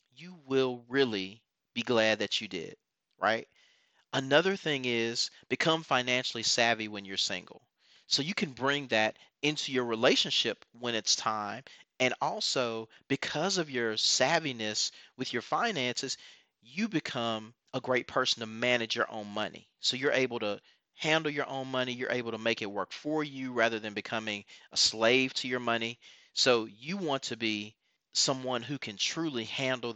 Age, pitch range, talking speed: 40-59, 115-160 Hz, 165 wpm